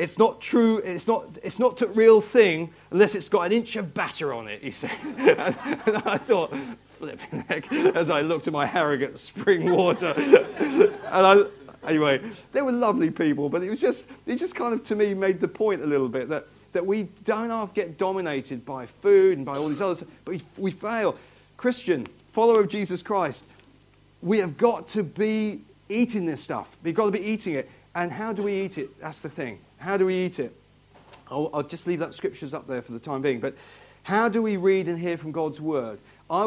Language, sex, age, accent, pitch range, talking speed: English, male, 40-59, British, 150-215 Hz, 215 wpm